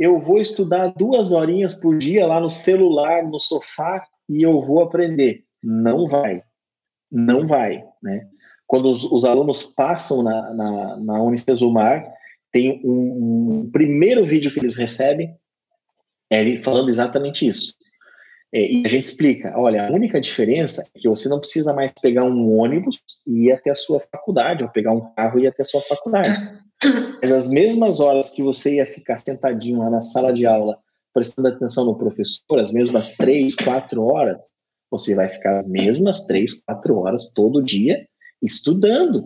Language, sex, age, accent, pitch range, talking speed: Portuguese, male, 30-49, Brazilian, 120-175 Hz, 165 wpm